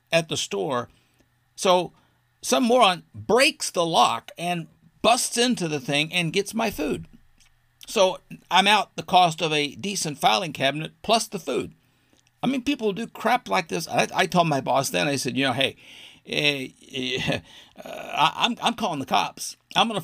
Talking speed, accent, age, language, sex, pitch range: 175 wpm, American, 50-69, English, male, 140-210 Hz